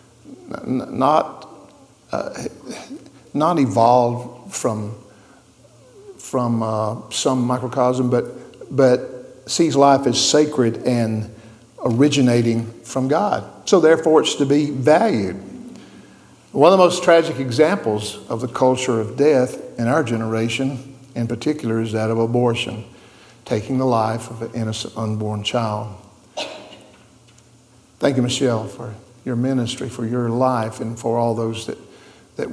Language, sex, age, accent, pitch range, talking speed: English, male, 50-69, American, 115-130 Hz, 125 wpm